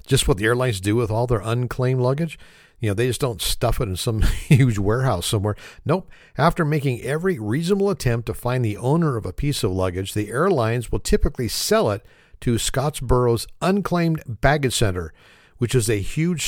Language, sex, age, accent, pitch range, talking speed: English, male, 50-69, American, 115-150 Hz, 190 wpm